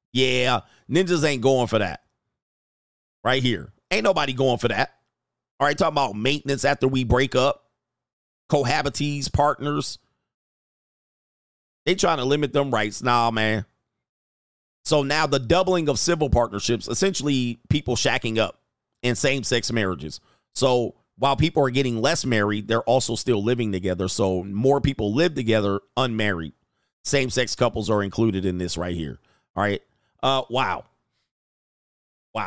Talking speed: 140 wpm